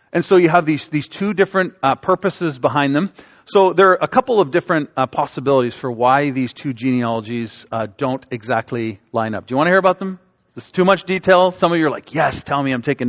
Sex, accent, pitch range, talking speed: male, American, 130-175 Hz, 240 wpm